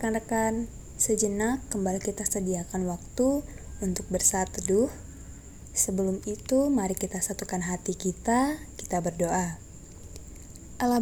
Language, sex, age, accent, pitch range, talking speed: Indonesian, female, 20-39, native, 180-215 Hz, 100 wpm